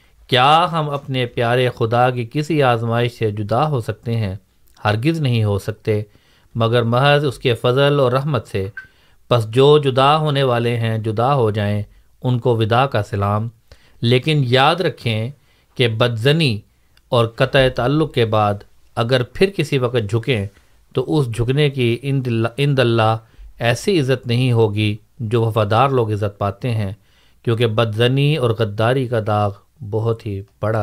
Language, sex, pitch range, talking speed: Urdu, male, 110-135 Hz, 155 wpm